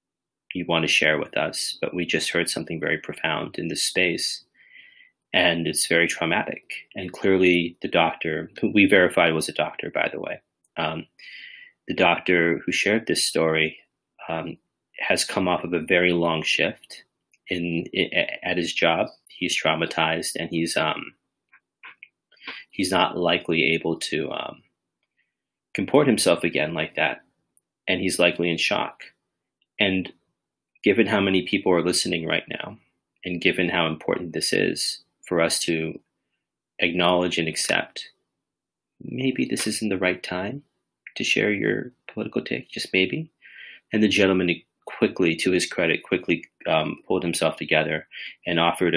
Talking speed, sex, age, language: 150 wpm, male, 30-49, English